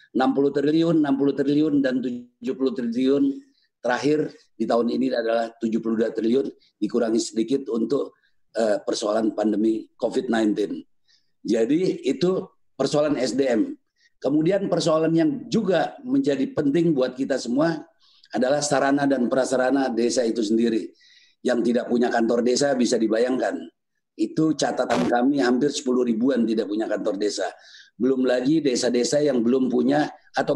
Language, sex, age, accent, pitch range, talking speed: Indonesian, male, 40-59, native, 120-155 Hz, 125 wpm